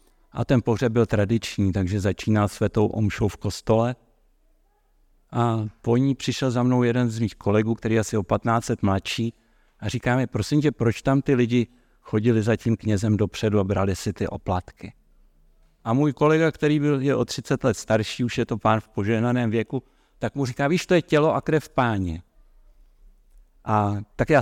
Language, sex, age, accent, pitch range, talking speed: Czech, male, 60-79, native, 105-125 Hz, 185 wpm